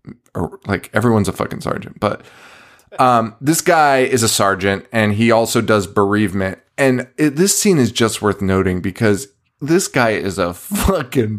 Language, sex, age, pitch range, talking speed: English, male, 20-39, 105-140 Hz, 165 wpm